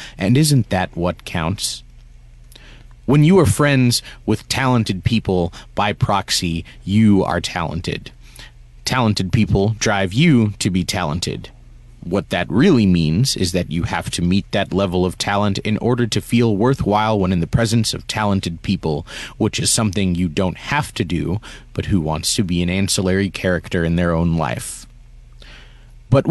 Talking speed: 160 wpm